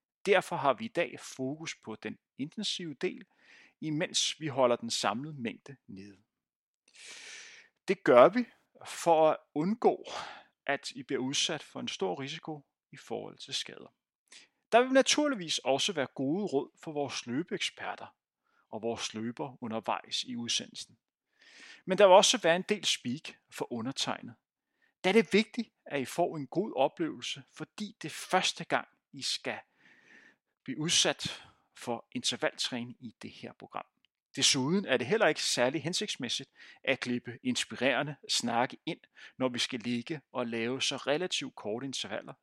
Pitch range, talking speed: 130-200 Hz, 150 wpm